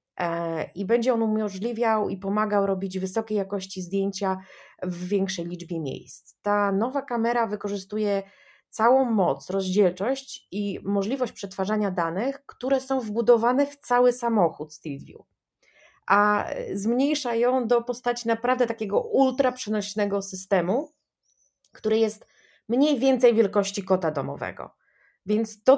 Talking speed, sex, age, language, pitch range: 115 wpm, female, 30-49, Polish, 185-235 Hz